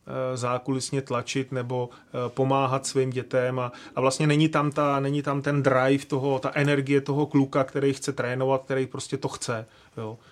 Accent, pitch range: native, 130-140 Hz